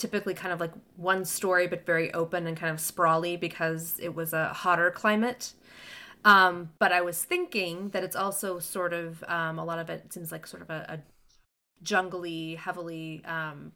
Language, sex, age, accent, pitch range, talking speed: English, female, 20-39, American, 165-205 Hz, 190 wpm